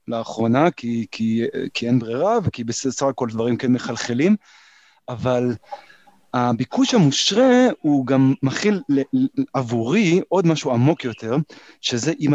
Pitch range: 125-175 Hz